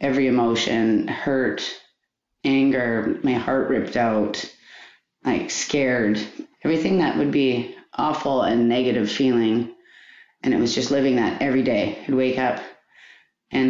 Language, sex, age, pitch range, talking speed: English, female, 30-49, 125-150 Hz, 130 wpm